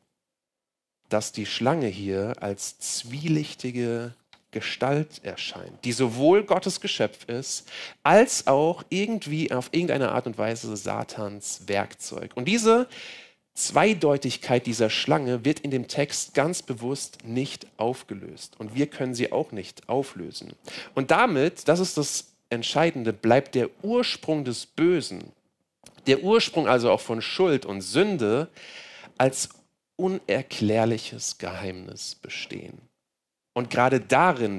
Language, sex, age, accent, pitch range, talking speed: German, male, 40-59, German, 105-140 Hz, 120 wpm